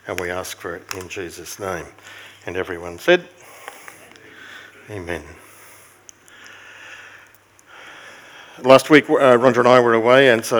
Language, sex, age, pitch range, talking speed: English, male, 50-69, 105-130 Hz, 125 wpm